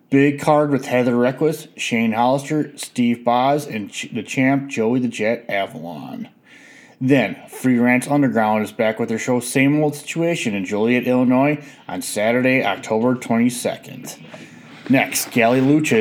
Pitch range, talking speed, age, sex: 120-150 Hz, 140 wpm, 30-49, male